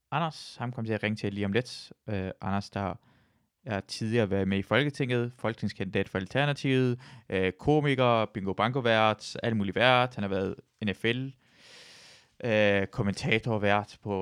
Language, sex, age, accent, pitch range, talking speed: Danish, male, 20-39, native, 95-125 Hz, 155 wpm